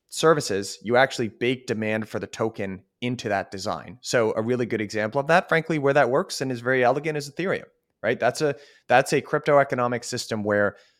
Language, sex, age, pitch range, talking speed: English, male, 30-49, 105-140 Hz, 200 wpm